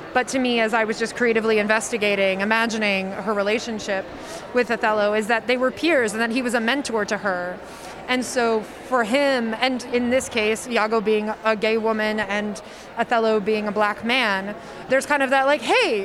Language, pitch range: English, 215-245 Hz